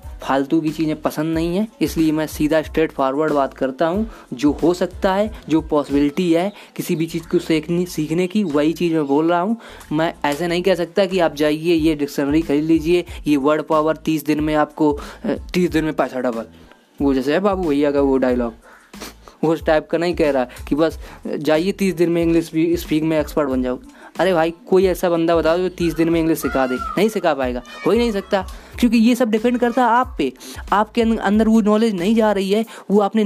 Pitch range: 155-200 Hz